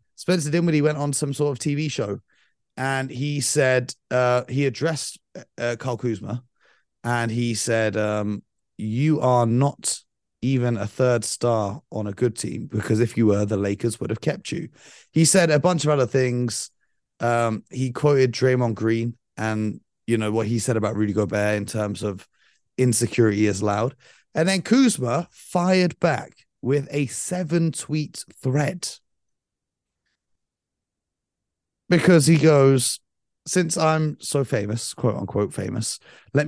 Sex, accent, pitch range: male, British, 115-150 Hz